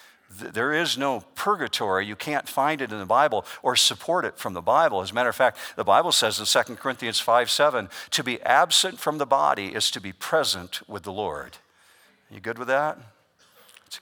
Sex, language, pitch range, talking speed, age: male, English, 95-135 Hz, 210 wpm, 50-69